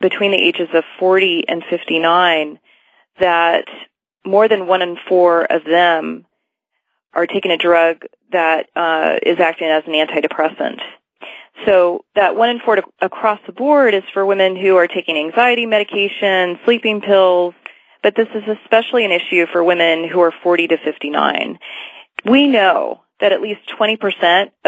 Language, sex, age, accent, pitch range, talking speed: English, female, 30-49, American, 170-215 Hz, 155 wpm